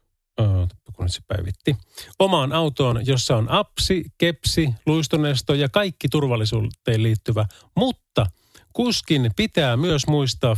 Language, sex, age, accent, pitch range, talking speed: Finnish, male, 30-49, native, 100-145 Hz, 115 wpm